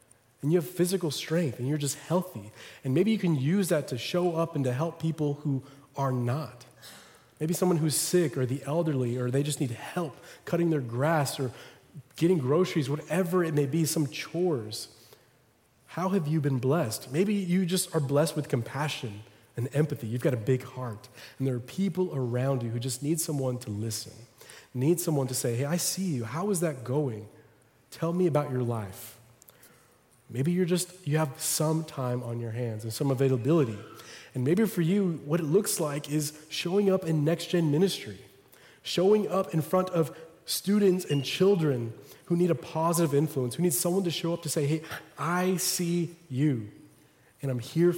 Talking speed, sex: 190 wpm, male